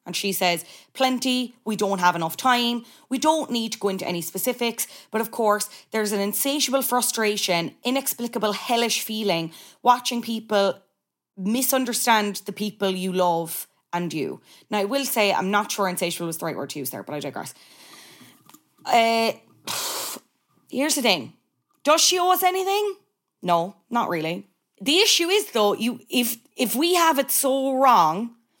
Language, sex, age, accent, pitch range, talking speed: English, female, 20-39, Irish, 200-255 Hz, 160 wpm